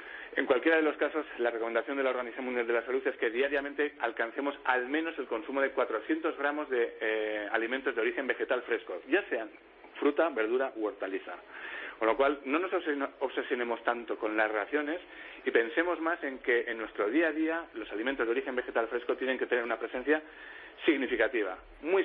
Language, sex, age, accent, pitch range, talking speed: Spanish, male, 40-59, Spanish, 120-180 Hz, 195 wpm